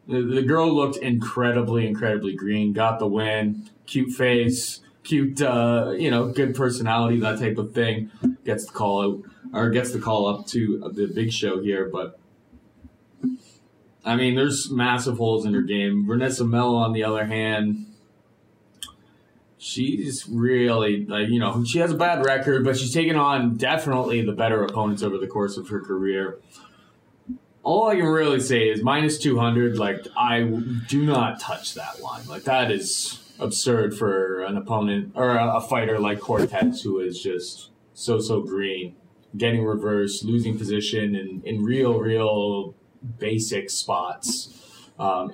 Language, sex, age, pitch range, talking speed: English, male, 20-39, 105-125 Hz, 160 wpm